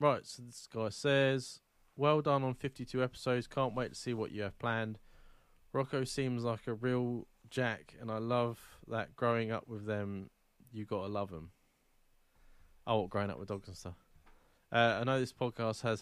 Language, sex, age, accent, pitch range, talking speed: English, male, 20-39, British, 105-125 Hz, 185 wpm